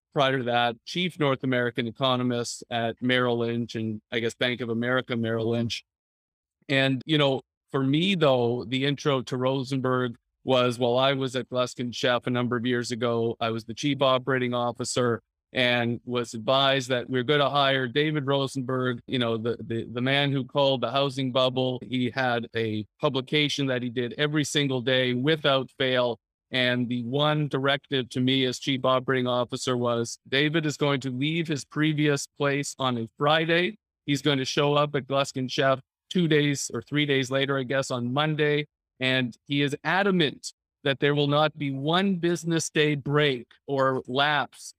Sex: male